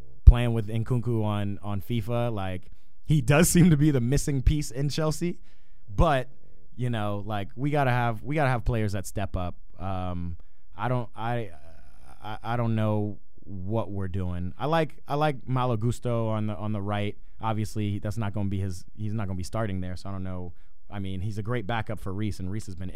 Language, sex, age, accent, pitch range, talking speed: English, male, 20-39, American, 95-120 Hz, 220 wpm